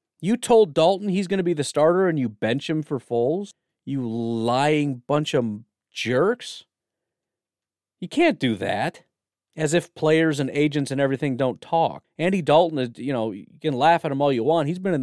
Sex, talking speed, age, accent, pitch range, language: male, 195 wpm, 40-59, American, 125-170 Hz, English